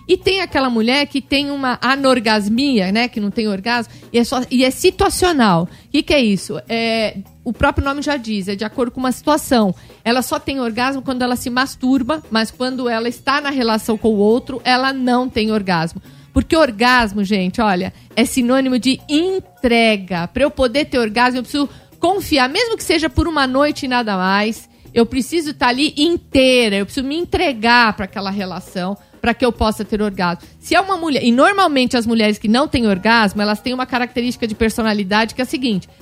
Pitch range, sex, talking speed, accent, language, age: 220-275 Hz, female, 195 wpm, Brazilian, English, 50-69